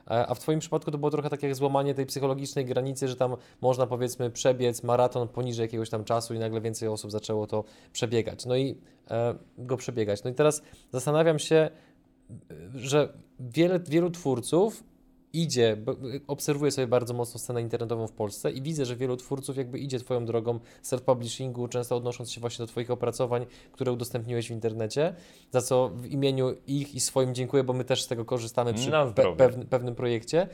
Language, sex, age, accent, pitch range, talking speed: Polish, male, 20-39, native, 120-145 Hz, 175 wpm